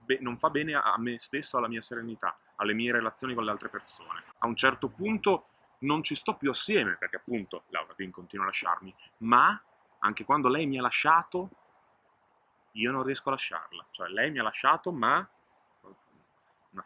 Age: 30-49